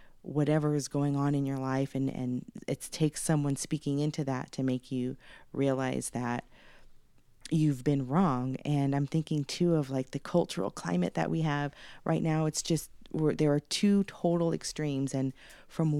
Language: English